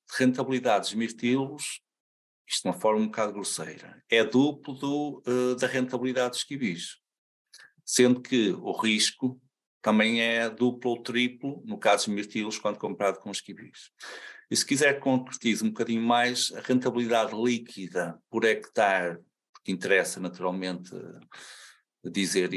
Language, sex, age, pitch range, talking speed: Portuguese, male, 50-69, 100-130 Hz, 135 wpm